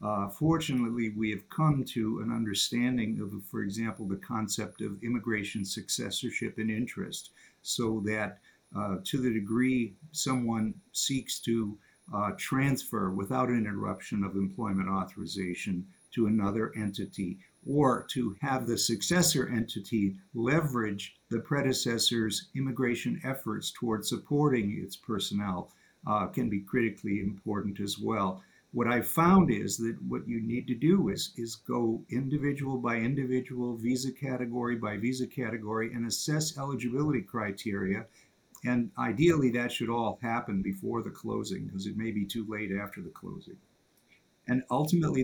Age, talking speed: 50-69, 140 wpm